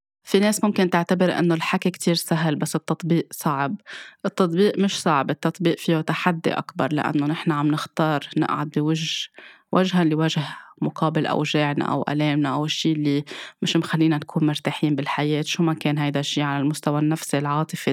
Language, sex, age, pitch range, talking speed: Arabic, female, 20-39, 150-175 Hz, 160 wpm